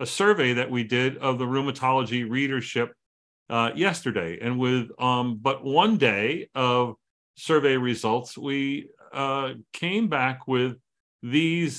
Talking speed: 130 wpm